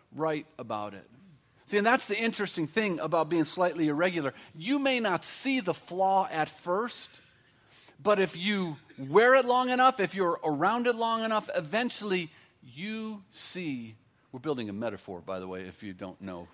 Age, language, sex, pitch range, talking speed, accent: 50-69, English, male, 150-235 Hz, 175 wpm, American